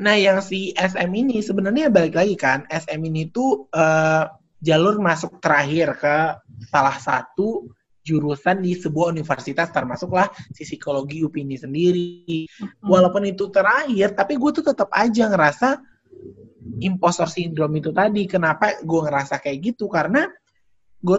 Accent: native